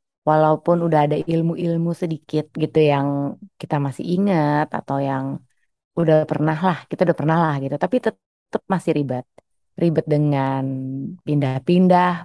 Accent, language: native, Indonesian